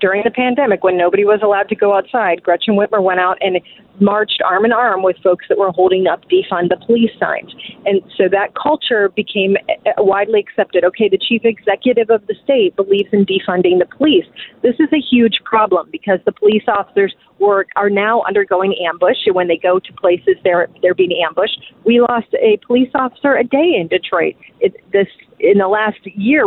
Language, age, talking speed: English, 30-49, 195 wpm